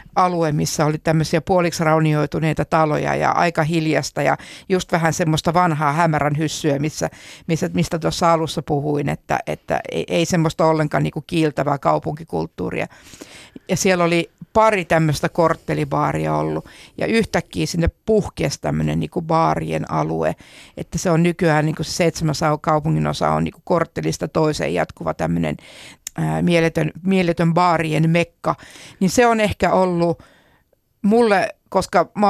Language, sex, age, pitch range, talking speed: Finnish, female, 60-79, 155-180 Hz, 130 wpm